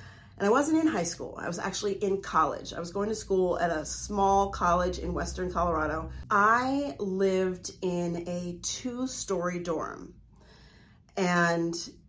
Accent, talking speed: American, 150 wpm